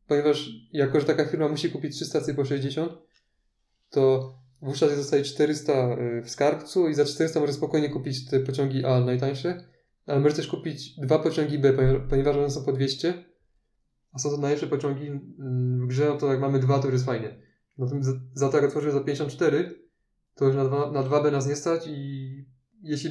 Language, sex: Polish, male